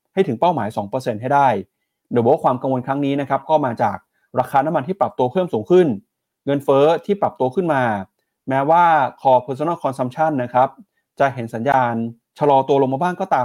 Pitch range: 115-150 Hz